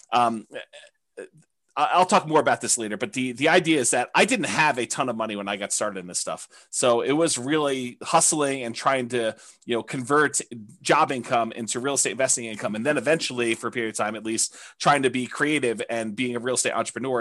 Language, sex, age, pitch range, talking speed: English, male, 30-49, 115-165 Hz, 225 wpm